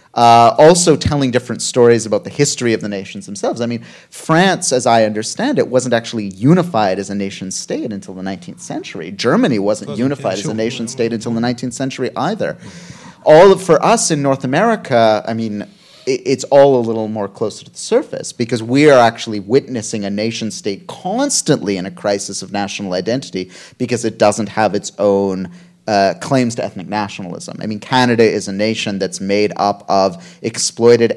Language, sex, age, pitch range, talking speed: German, male, 30-49, 105-135 Hz, 180 wpm